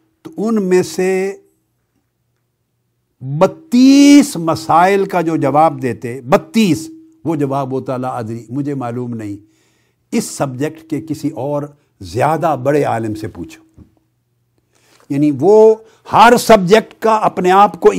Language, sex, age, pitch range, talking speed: Urdu, male, 60-79, 135-180 Hz, 120 wpm